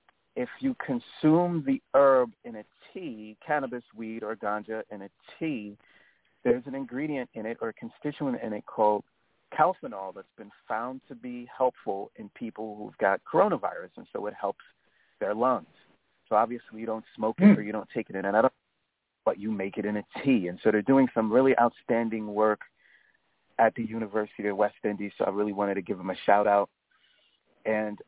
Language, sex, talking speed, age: English, male, 190 wpm, 40-59